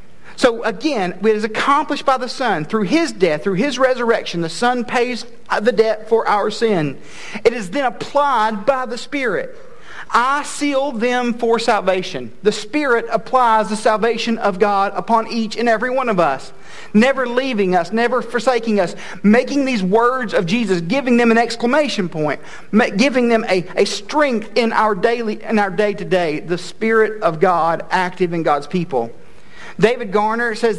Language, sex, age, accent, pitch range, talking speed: English, male, 50-69, American, 210-250 Hz, 165 wpm